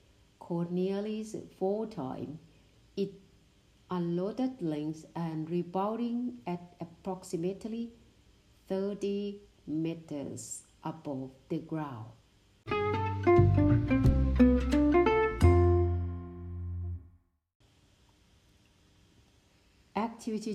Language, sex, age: Thai, female, 60-79